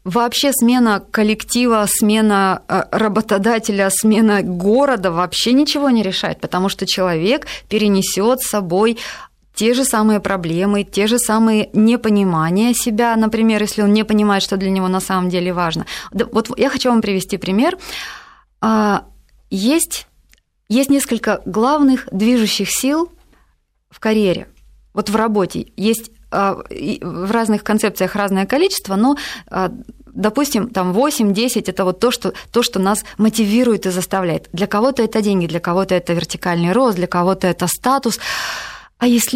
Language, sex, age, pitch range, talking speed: Russian, female, 20-39, 195-240 Hz, 135 wpm